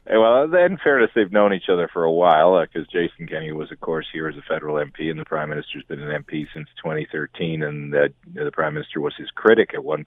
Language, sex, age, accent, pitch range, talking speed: English, male, 40-59, American, 75-80 Hz, 260 wpm